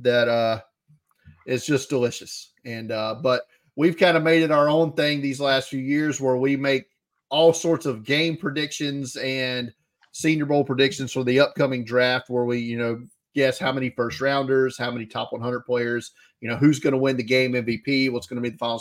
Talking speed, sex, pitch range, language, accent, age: 205 wpm, male, 120-135 Hz, English, American, 30-49